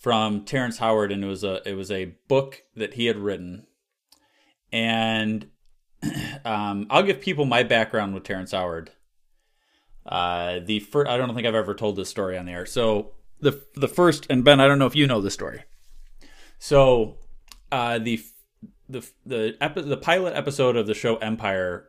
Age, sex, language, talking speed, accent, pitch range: 30-49, male, English, 175 wpm, American, 100-125 Hz